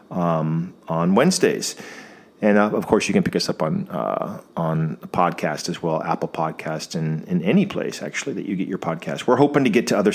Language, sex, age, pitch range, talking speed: English, male, 40-59, 85-100 Hz, 220 wpm